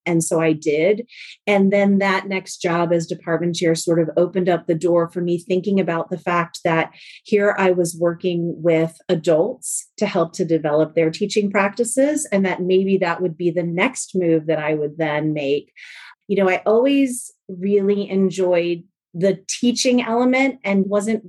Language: English